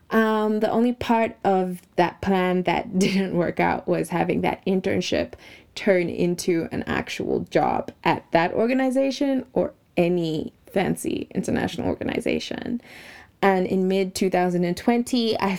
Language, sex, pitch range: English, female, 175-210 Hz